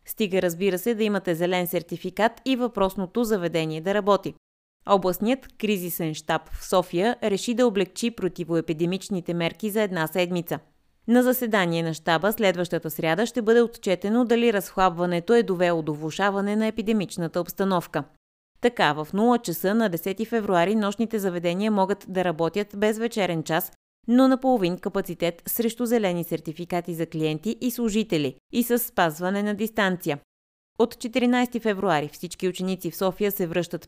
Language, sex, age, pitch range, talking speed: Bulgarian, female, 30-49, 170-220 Hz, 145 wpm